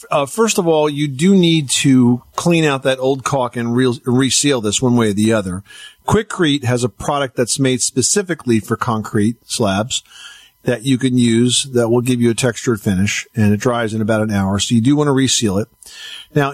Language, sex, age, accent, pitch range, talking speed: English, male, 50-69, American, 115-140 Hz, 205 wpm